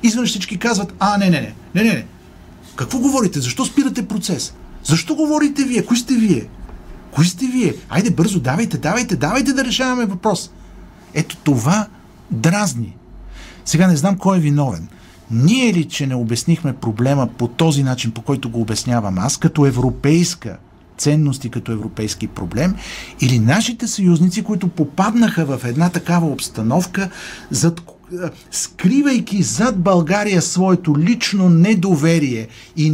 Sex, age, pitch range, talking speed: male, 50-69, 140-205 Hz, 145 wpm